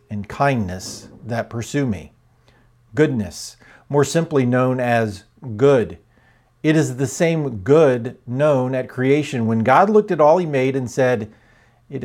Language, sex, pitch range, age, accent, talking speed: English, male, 110-140 Hz, 50-69, American, 145 wpm